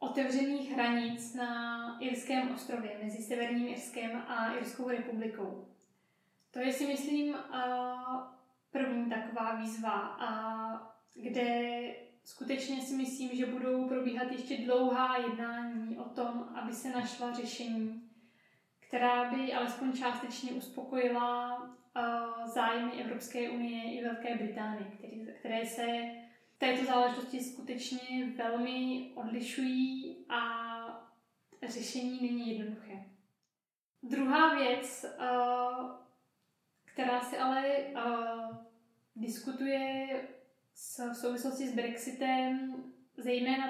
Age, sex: 20-39, female